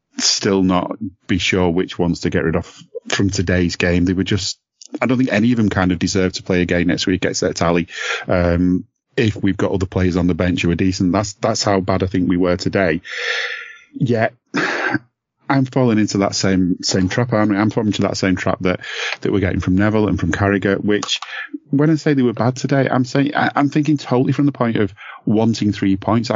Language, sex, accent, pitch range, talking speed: English, male, British, 95-120 Hz, 220 wpm